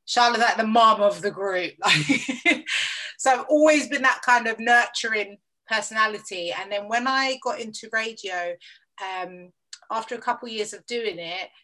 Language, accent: English, British